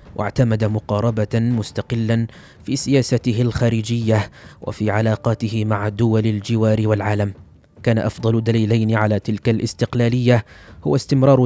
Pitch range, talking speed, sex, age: 110-120 Hz, 105 wpm, male, 20-39